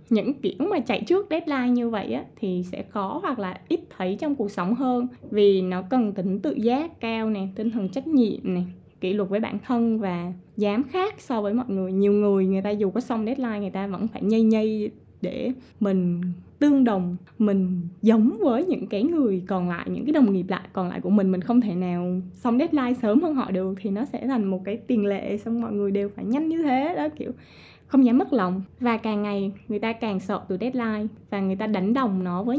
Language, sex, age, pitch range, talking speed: Vietnamese, female, 20-39, 200-255 Hz, 235 wpm